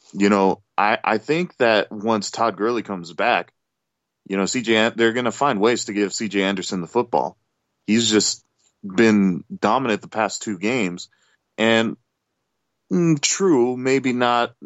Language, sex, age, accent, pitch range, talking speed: English, male, 30-49, American, 100-120 Hz, 155 wpm